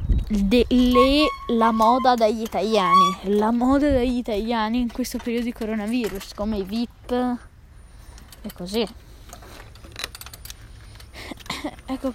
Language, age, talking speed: Italian, 20-39, 100 wpm